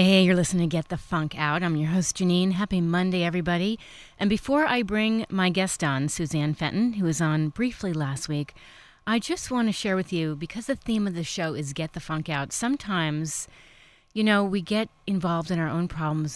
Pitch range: 155-195 Hz